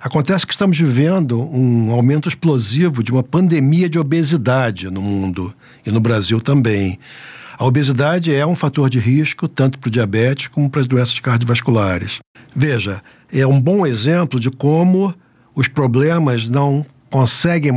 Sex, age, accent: male, 60-79, Brazilian